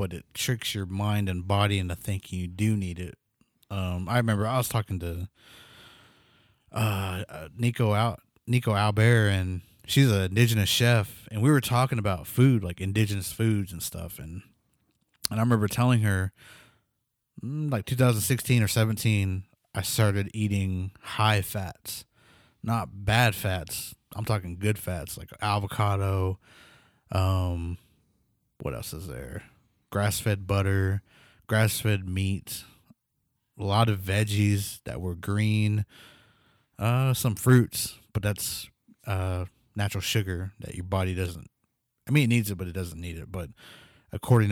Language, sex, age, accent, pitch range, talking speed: English, male, 30-49, American, 95-115 Hz, 140 wpm